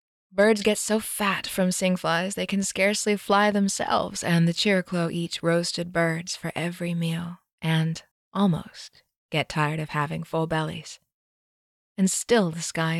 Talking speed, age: 150 wpm, 20-39